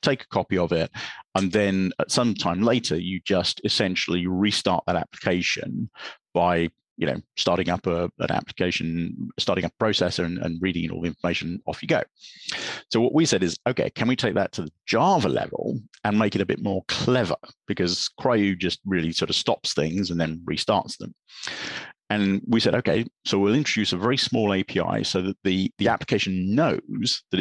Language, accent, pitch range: English, British, 85-100 Hz